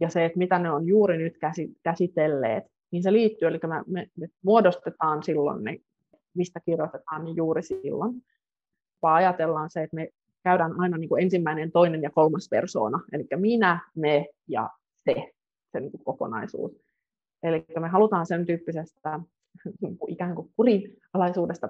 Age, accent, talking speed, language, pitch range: 30-49, native, 135 wpm, Finnish, 160-200 Hz